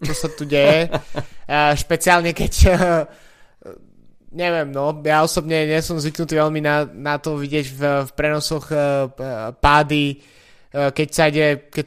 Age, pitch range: 20-39, 140-160 Hz